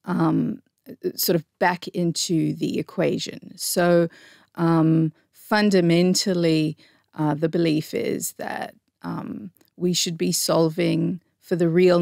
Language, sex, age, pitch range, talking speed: English, female, 30-49, 160-185 Hz, 115 wpm